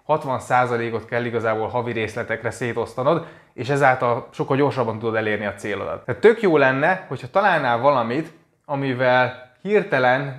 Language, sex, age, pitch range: Hungarian, male, 20-39, 120-140 Hz